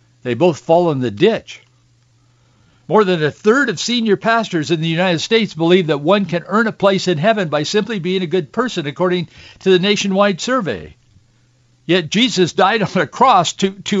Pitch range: 125-185 Hz